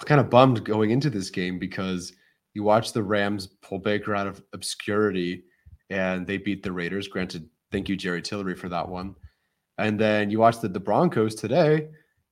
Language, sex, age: English, male, 30-49